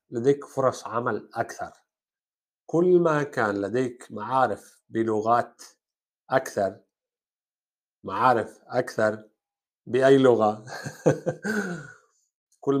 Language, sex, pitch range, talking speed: Arabic, male, 110-150 Hz, 75 wpm